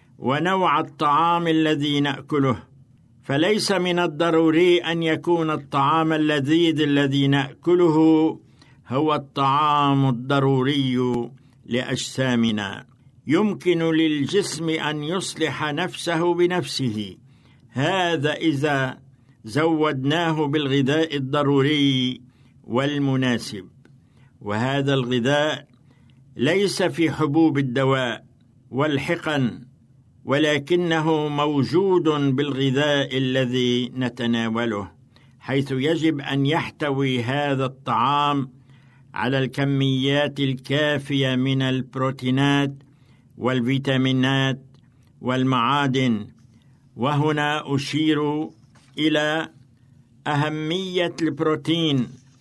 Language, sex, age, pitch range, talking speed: Arabic, male, 60-79, 130-155 Hz, 70 wpm